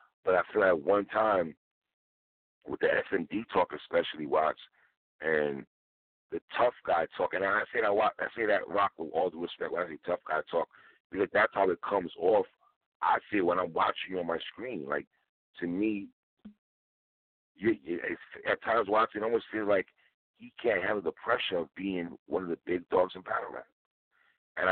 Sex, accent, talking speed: male, American, 195 wpm